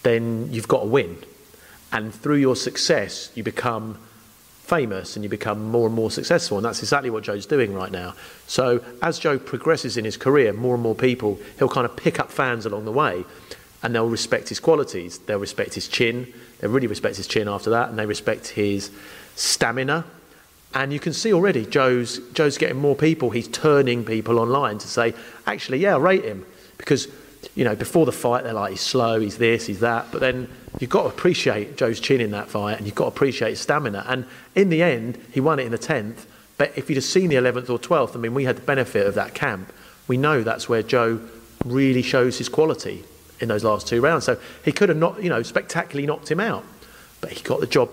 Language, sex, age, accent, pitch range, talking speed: English, male, 40-59, British, 110-135 Hz, 225 wpm